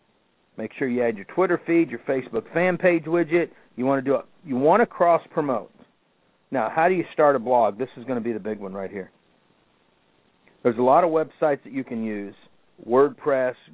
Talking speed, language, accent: 215 wpm, English, American